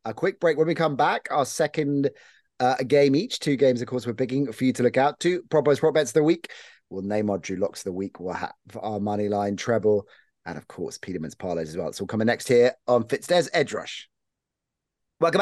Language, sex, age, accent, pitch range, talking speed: English, male, 30-49, British, 110-155 Hz, 235 wpm